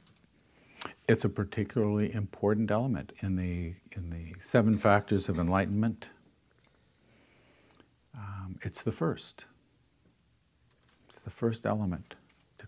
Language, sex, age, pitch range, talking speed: English, male, 50-69, 90-105 Hz, 105 wpm